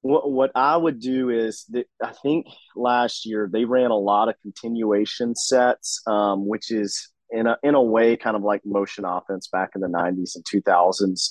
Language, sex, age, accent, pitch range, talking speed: English, male, 30-49, American, 105-125 Hz, 190 wpm